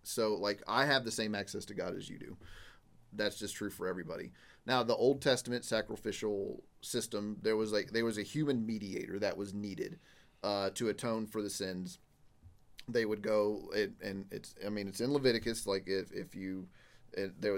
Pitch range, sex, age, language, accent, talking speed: 100-120 Hz, male, 30-49, English, American, 190 wpm